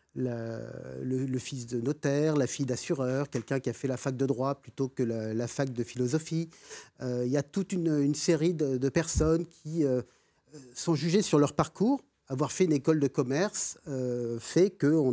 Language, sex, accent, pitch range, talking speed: French, male, French, 125-165 Hz, 200 wpm